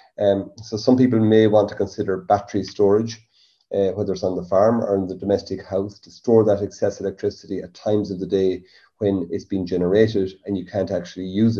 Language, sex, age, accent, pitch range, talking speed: English, male, 30-49, Irish, 95-110 Hz, 205 wpm